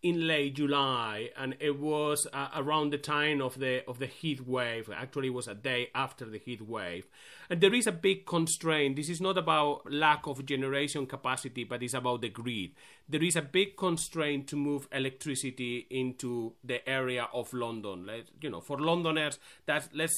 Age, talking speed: 30-49, 190 wpm